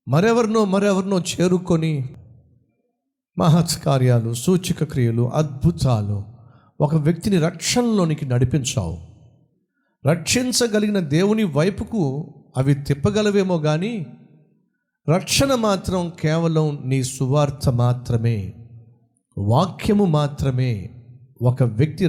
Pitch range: 120-180 Hz